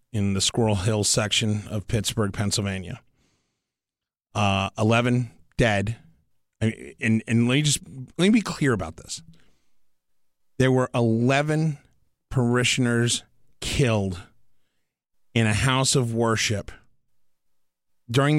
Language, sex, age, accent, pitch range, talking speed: English, male, 30-49, American, 105-125 Hz, 100 wpm